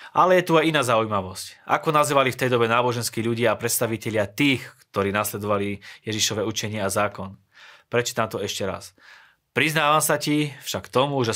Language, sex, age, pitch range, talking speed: Slovak, male, 20-39, 105-130 Hz, 170 wpm